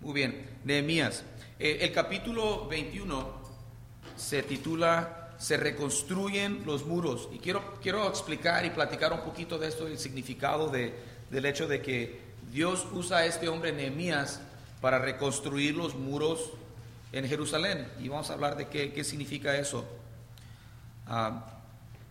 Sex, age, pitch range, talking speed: male, 40-59, 120-160 Hz, 140 wpm